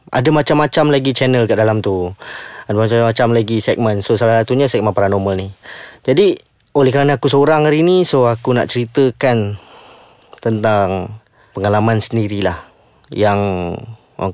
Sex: male